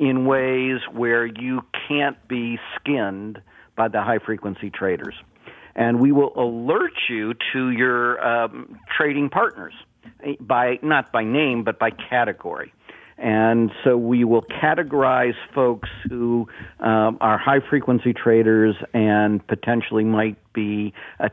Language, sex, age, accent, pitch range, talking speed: English, male, 50-69, American, 110-130 Hz, 125 wpm